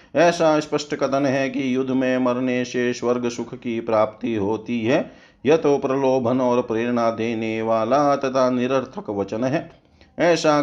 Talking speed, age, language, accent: 150 wpm, 40-59, Hindi, native